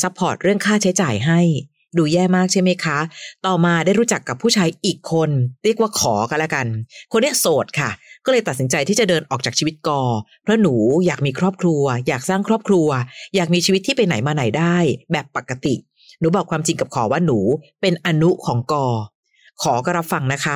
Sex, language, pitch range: female, Thai, 145-190 Hz